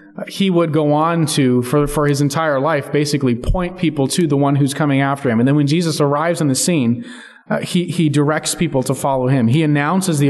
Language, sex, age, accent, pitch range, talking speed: English, male, 30-49, American, 140-170 Hz, 225 wpm